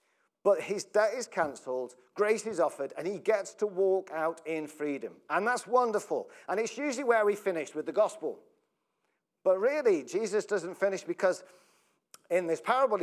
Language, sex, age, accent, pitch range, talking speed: English, male, 40-59, British, 150-230 Hz, 170 wpm